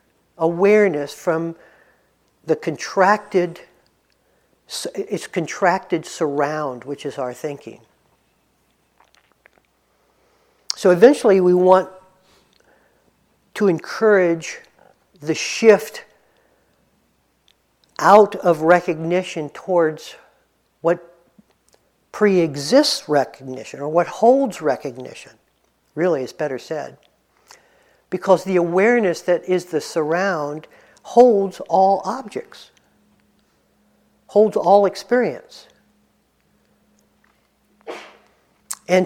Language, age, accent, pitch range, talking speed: English, 60-79, American, 165-210 Hz, 75 wpm